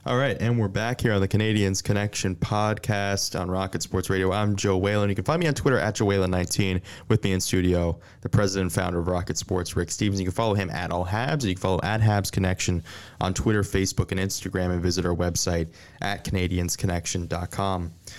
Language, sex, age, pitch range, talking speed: English, male, 20-39, 90-105 Hz, 215 wpm